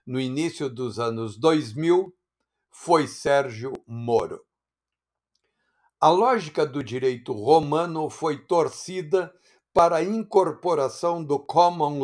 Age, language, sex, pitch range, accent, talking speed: 60-79, English, male, 135-175 Hz, Brazilian, 100 wpm